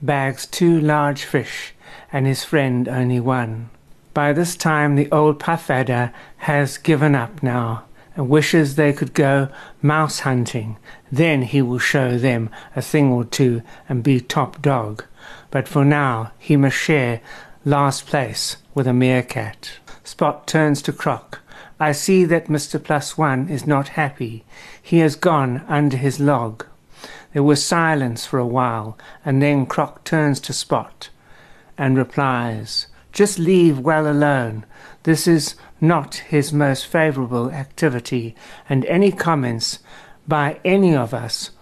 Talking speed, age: 145 wpm, 60-79